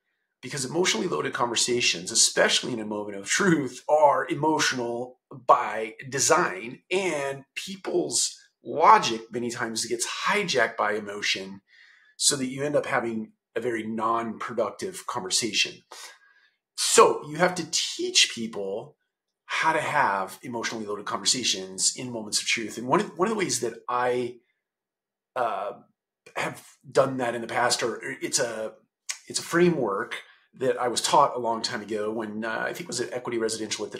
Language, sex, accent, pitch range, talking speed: English, male, American, 115-160 Hz, 160 wpm